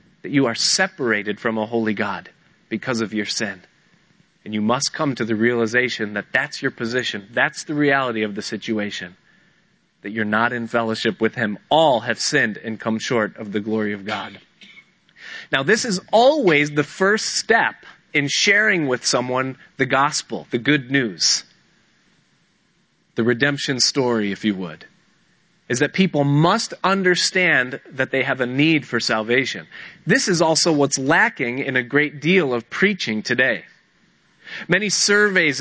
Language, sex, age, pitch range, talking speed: English, male, 30-49, 120-180 Hz, 160 wpm